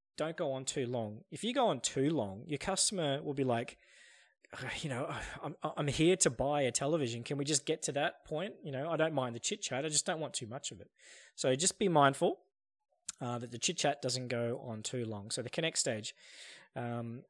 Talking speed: 230 wpm